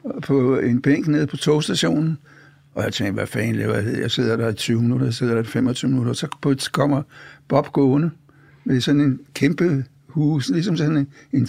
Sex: male